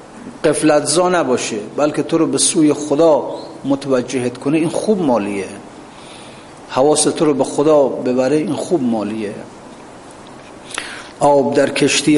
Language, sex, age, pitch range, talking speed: Persian, male, 50-69, 140-190 Hz, 125 wpm